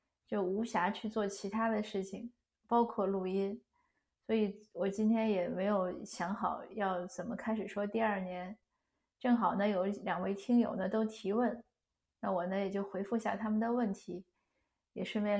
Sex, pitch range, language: female, 200-235 Hz, Chinese